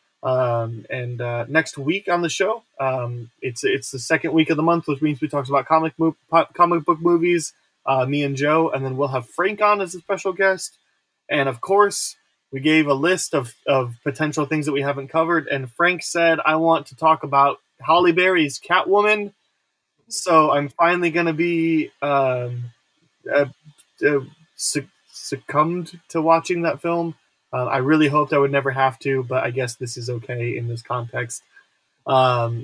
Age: 20-39